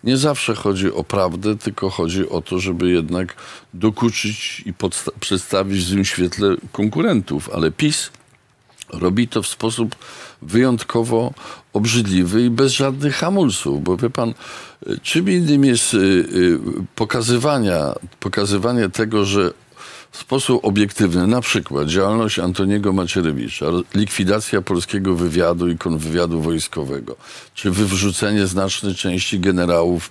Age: 50-69